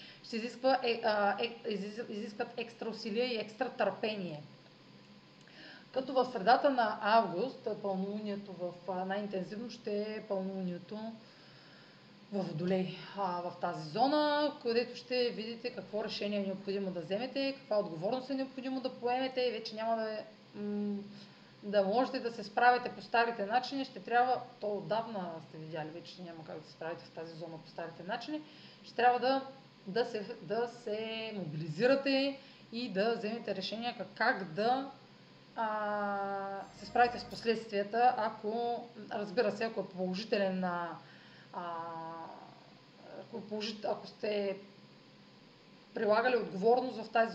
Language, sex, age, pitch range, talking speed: Bulgarian, female, 30-49, 195-240 Hz, 140 wpm